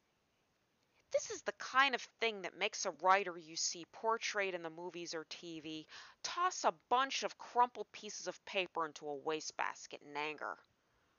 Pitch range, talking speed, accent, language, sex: 165-245 Hz, 165 wpm, American, English, female